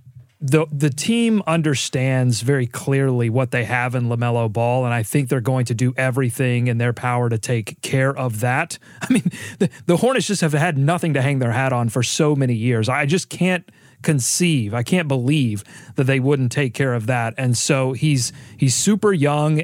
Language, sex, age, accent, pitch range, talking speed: English, male, 30-49, American, 125-160 Hz, 200 wpm